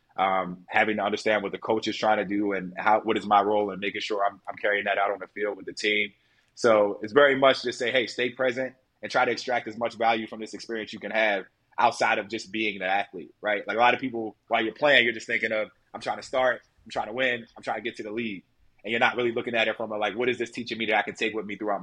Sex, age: male, 20-39